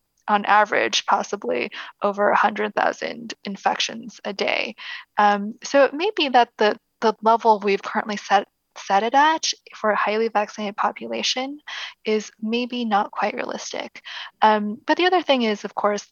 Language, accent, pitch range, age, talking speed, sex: English, American, 205-230 Hz, 10-29, 155 wpm, female